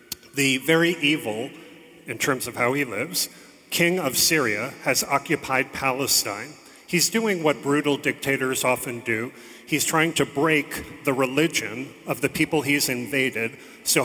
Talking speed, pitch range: 145 wpm, 130-160 Hz